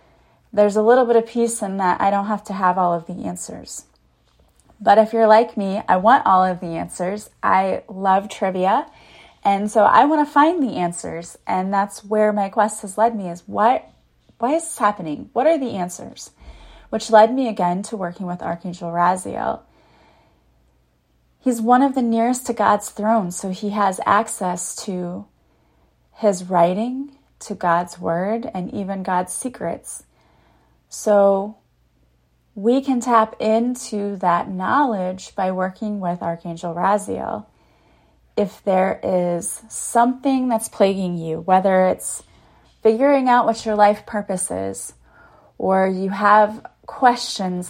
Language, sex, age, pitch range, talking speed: English, female, 30-49, 180-225 Hz, 150 wpm